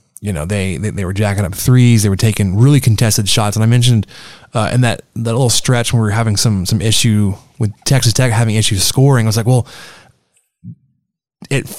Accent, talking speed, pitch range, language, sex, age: American, 215 wpm, 105-130 Hz, English, male, 20-39